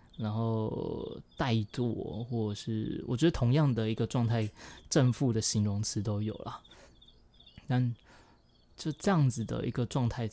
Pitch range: 110-135 Hz